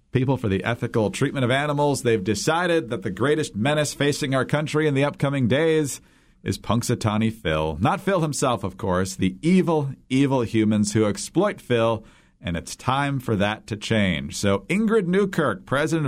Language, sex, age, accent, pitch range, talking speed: English, male, 50-69, American, 110-160 Hz, 170 wpm